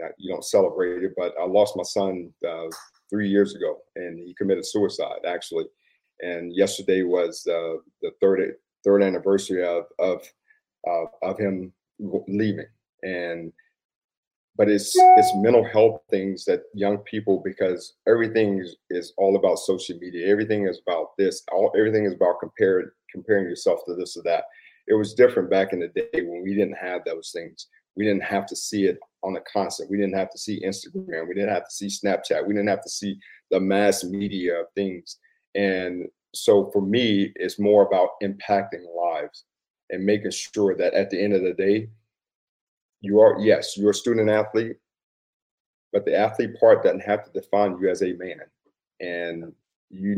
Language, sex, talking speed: English, male, 180 wpm